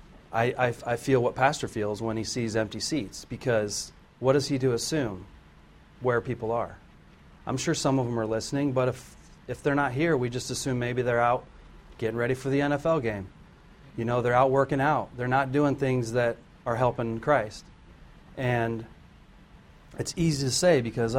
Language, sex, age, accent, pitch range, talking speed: English, male, 40-59, American, 110-135 Hz, 185 wpm